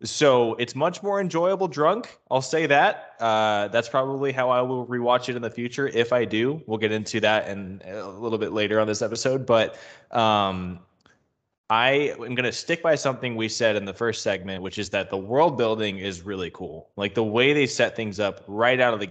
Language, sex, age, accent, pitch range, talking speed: English, male, 20-39, American, 100-125 Hz, 225 wpm